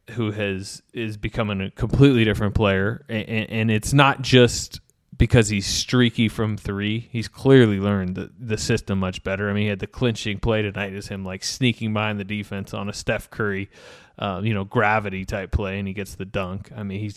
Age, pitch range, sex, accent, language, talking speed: 20-39, 100-120 Hz, male, American, English, 205 wpm